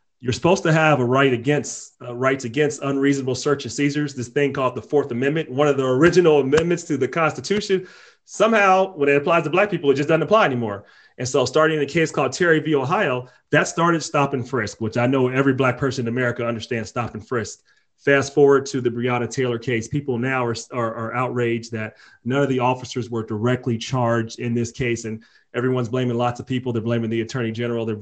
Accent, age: American, 30-49